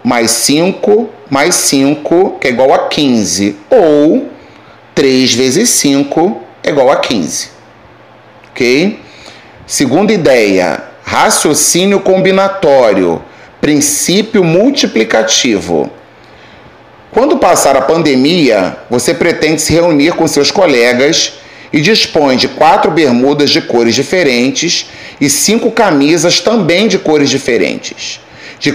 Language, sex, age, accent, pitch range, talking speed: Portuguese, male, 40-59, Brazilian, 130-180 Hz, 105 wpm